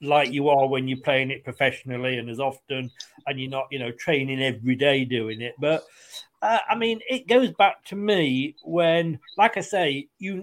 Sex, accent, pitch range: male, British, 145-205 Hz